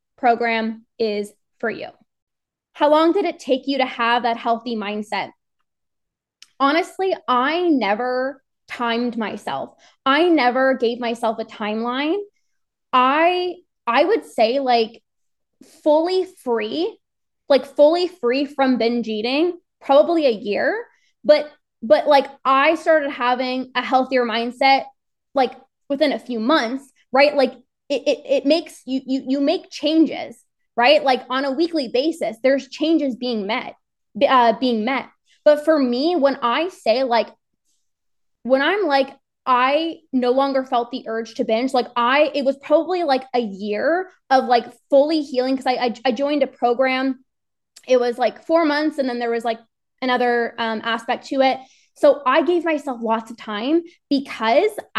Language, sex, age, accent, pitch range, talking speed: English, female, 20-39, American, 240-300 Hz, 155 wpm